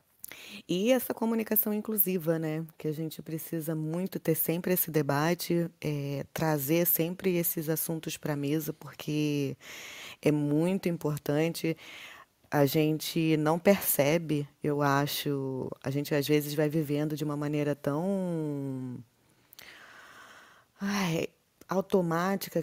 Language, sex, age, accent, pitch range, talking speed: Portuguese, female, 20-39, Brazilian, 150-175 Hz, 110 wpm